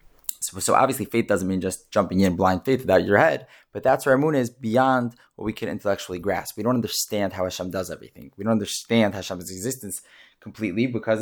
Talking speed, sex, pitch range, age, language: 215 wpm, male, 100-120 Hz, 20-39, English